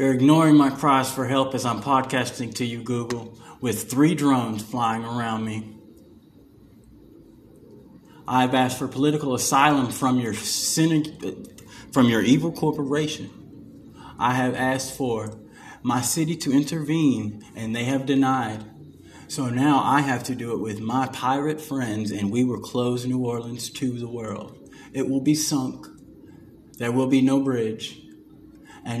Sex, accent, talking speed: male, American, 155 wpm